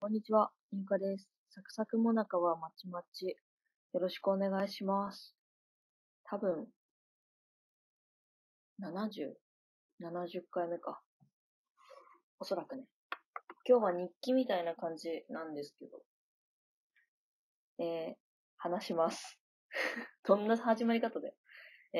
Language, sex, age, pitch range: Japanese, female, 20-39, 160-230 Hz